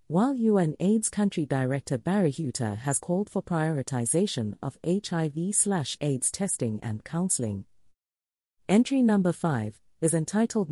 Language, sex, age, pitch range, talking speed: English, female, 40-59, 125-195 Hz, 120 wpm